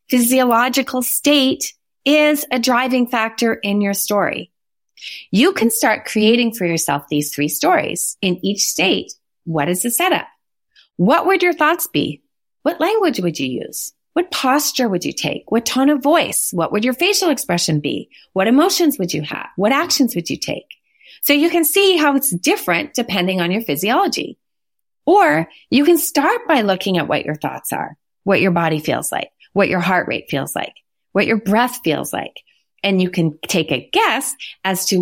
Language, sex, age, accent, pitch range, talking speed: English, female, 30-49, American, 185-285 Hz, 180 wpm